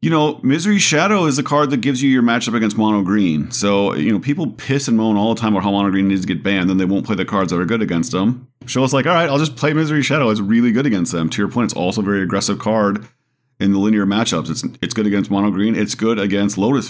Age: 40-59